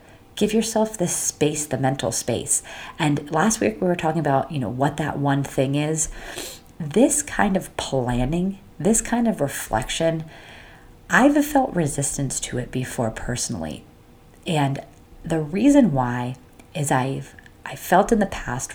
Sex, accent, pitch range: female, American, 135-185 Hz